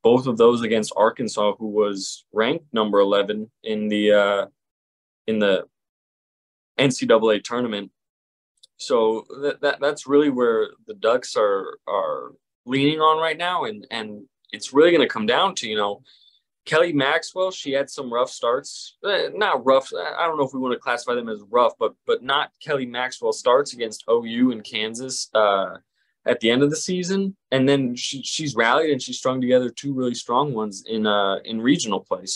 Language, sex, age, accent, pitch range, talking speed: English, male, 20-39, American, 110-145 Hz, 180 wpm